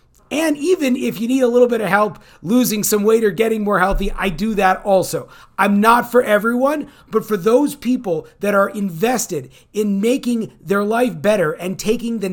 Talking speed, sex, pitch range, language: 195 wpm, male, 185-230 Hz, English